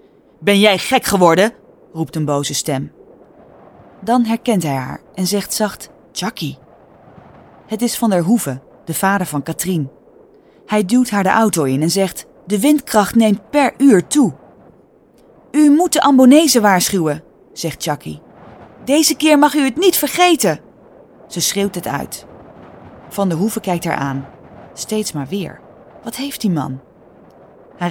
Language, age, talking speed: English, 20-39, 155 wpm